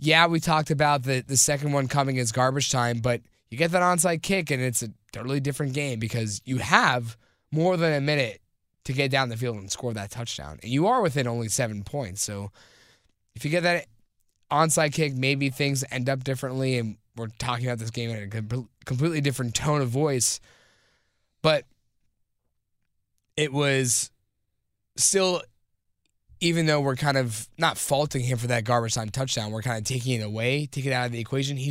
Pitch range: 115-145 Hz